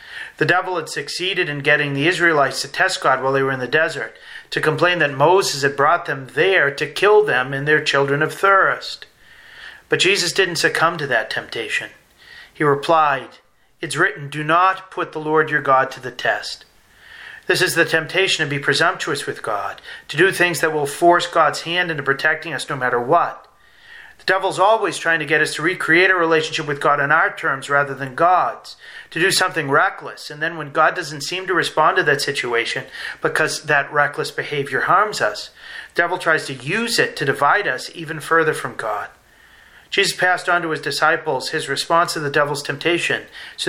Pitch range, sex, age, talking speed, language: 140-175 Hz, male, 40-59, 195 wpm, English